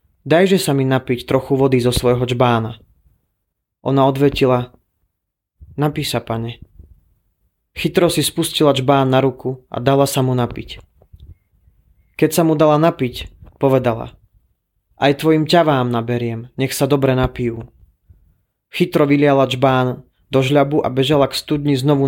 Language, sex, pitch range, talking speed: Slovak, male, 105-140 Hz, 135 wpm